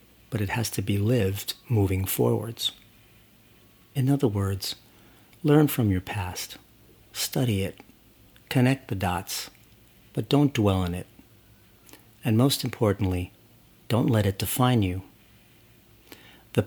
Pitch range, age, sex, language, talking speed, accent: 100-120 Hz, 50-69, male, English, 120 wpm, American